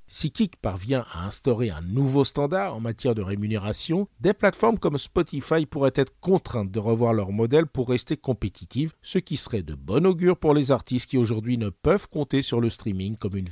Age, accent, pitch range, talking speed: 50-69, French, 105-150 Hz, 200 wpm